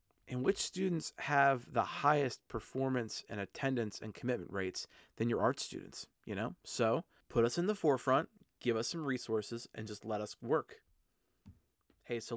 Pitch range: 110-135 Hz